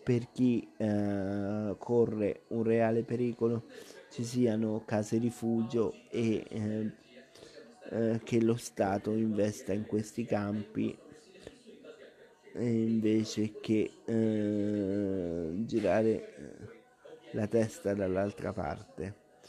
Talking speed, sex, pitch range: 85 wpm, male, 105-120 Hz